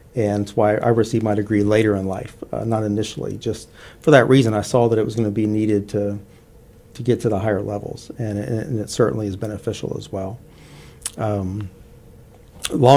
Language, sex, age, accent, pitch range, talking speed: English, male, 40-59, American, 105-120 Hz, 210 wpm